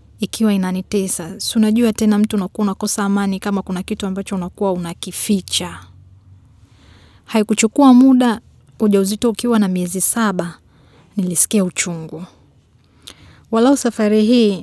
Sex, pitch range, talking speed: female, 175-210 Hz, 110 wpm